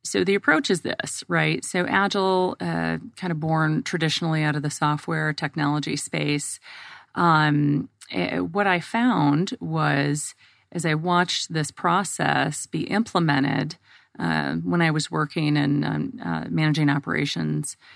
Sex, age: female, 30-49